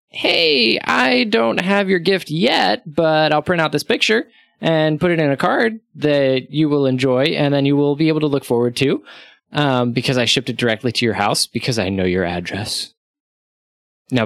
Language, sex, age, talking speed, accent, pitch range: English, male, 20-39, 200 wpm, American, 120-165 Hz